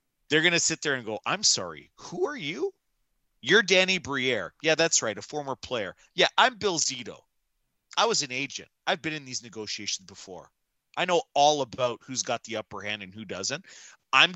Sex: male